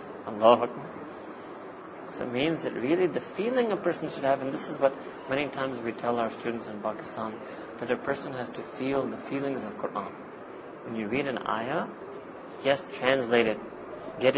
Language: English